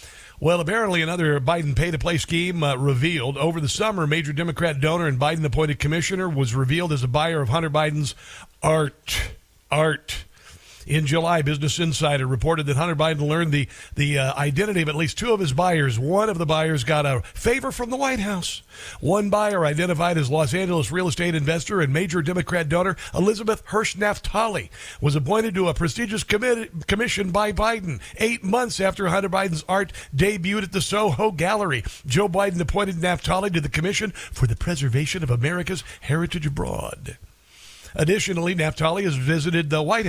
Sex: male